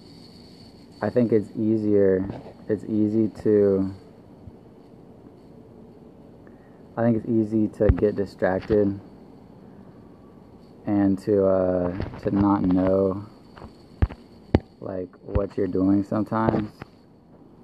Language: English